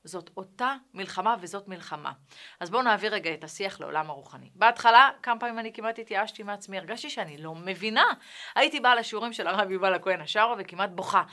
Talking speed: 180 wpm